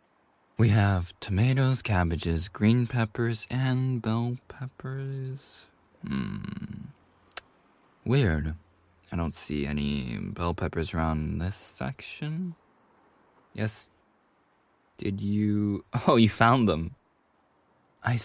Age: 20-39